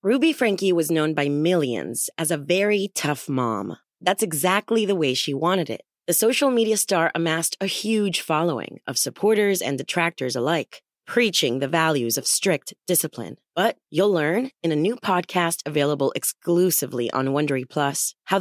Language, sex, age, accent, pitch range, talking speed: German, female, 30-49, American, 140-190 Hz, 165 wpm